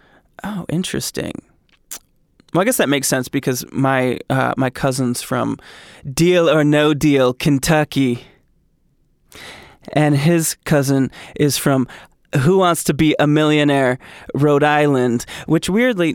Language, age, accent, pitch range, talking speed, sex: English, 20-39, American, 130-170 Hz, 125 wpm, male